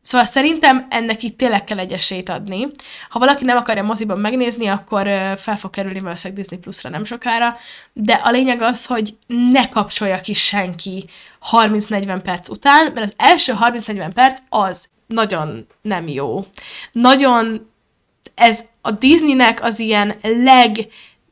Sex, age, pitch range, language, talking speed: female, 20-39, 200-255 Hz, Hungarian, 145 wpm